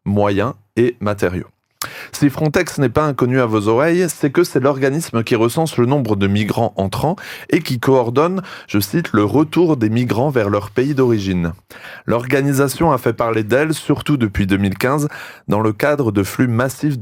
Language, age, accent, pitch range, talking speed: French, 20-39, French, 110-145 Hz, 175 wpm